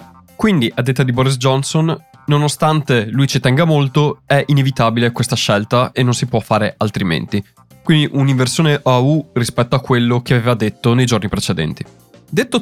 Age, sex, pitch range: 20-39, male, 110-135 Hz